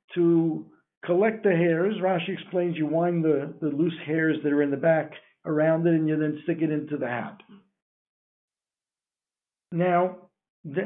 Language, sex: English, male